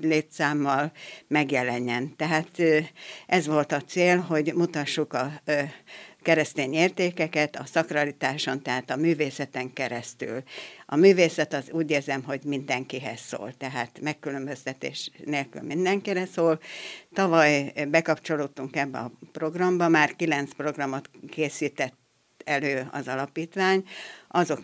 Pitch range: 140-165 Hz